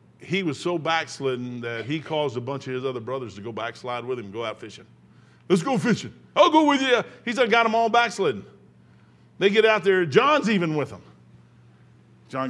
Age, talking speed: 50-69, 205 wpm